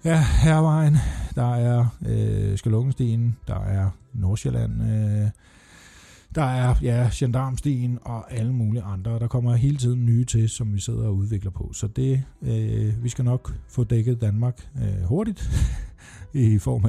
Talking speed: 150 wpm